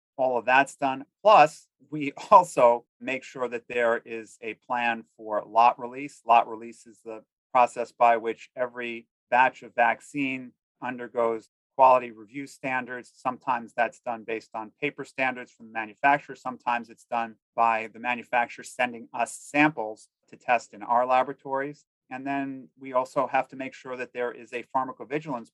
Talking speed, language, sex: 160 wpm, English, male